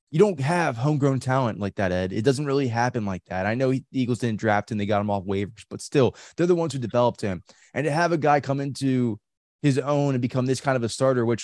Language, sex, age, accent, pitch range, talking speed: English, male, 20-39, American, 100-125 Hz, 270 wpm